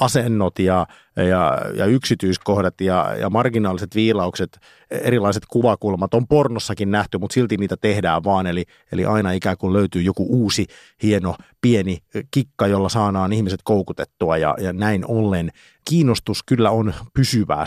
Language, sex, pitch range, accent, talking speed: Finnish, male, 95-115 Hz, native, 145 wpm